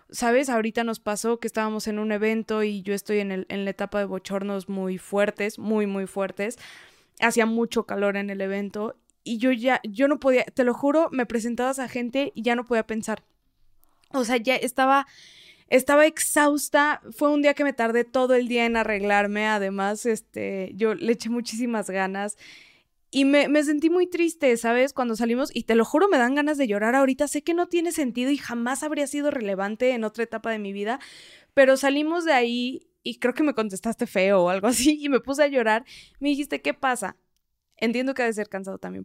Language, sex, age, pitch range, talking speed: Spanish, female, 20-39, 215-270 Hz, 210 wpm